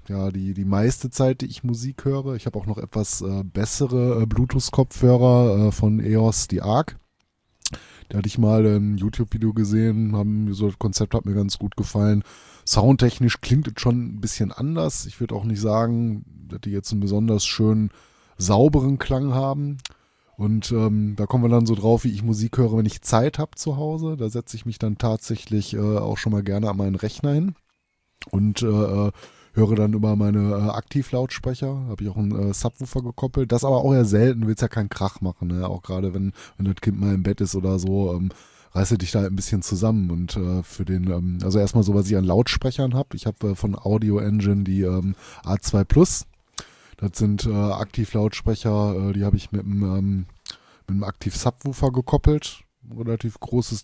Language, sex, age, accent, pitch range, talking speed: German, male, 20-39, German, 100-120 Hz, 200 wpm